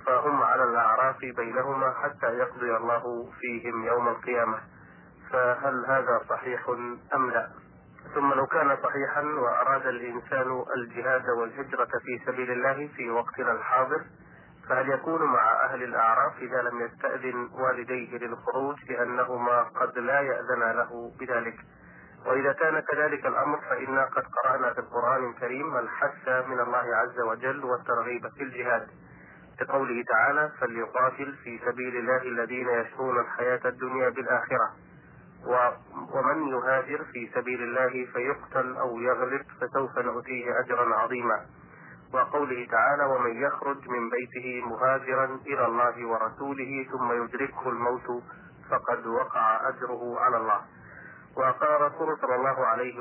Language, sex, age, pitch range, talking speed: Arabic, male, 30-49, 120-130 Hz, 120 wpm